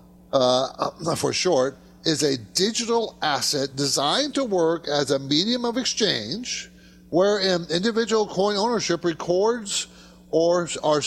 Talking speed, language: 120 wpm, English